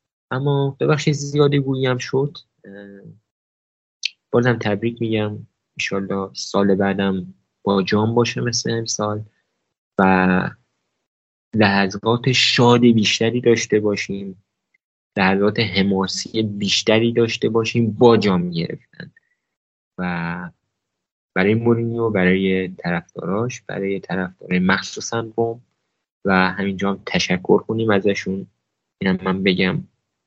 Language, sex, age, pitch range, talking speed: Persian, male, 20-39, 95-115 Hz, 95 wpm